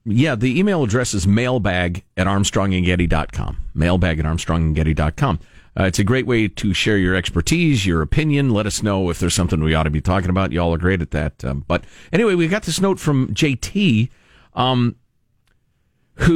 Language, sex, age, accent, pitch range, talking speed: English, male, 40-59, American, 95-140 Hz, 185 wpm